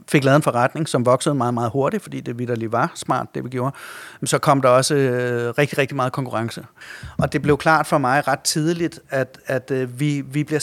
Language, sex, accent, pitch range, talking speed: Danish, male, native, 130-155 Hz, 245 wpm